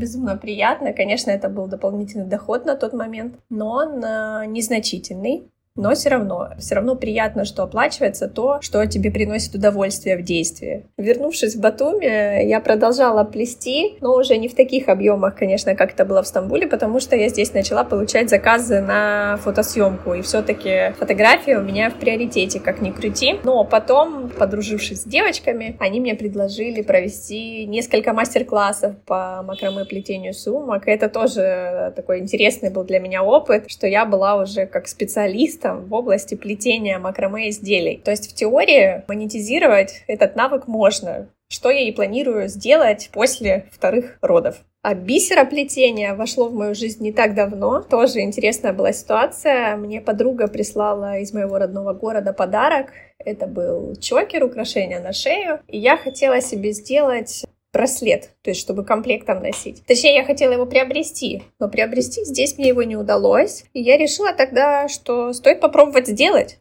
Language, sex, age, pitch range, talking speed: Russian, female, 20-39, 200-260 Hz, 155 wpm